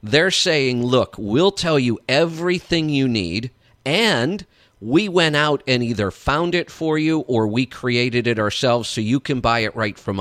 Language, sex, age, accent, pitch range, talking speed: English, male, 50-69, American, 115-160 Hz, 180 wpm